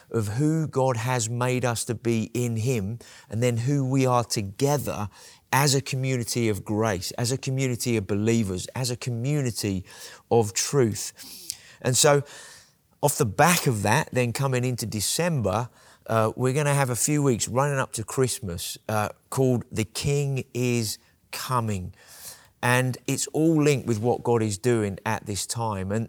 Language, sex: English, male